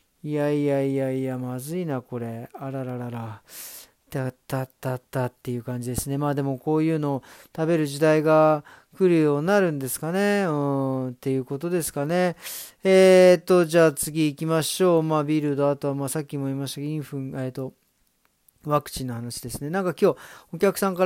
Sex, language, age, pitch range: male, Japanese, 40-59, 130-165 Hz